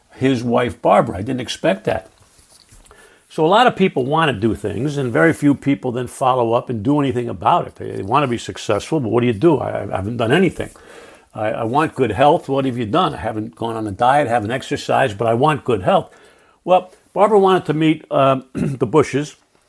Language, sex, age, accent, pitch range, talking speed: English, male, 60-79, American, 125-155 Hz, 225 wpm